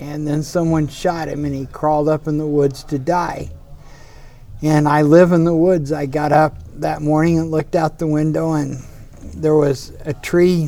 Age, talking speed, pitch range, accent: 60-79, 195 wpm, 140-165 Hz, American